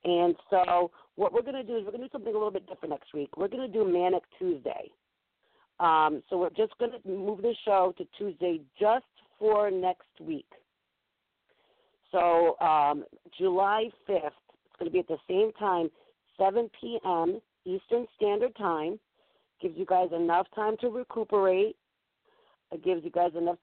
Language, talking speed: English, 175 wpm